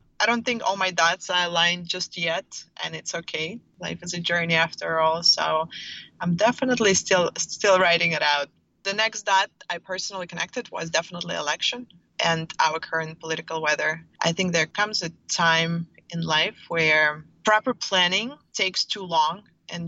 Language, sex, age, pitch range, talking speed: English, female, 20-39, 160-185 Hz, 170 wpm